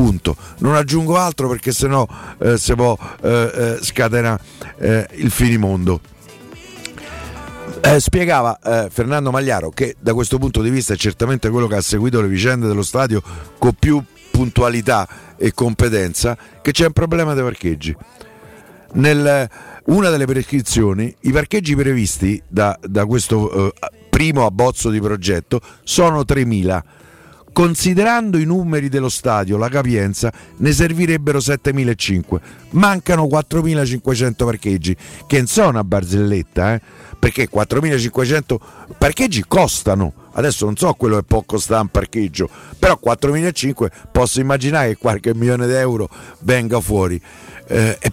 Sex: male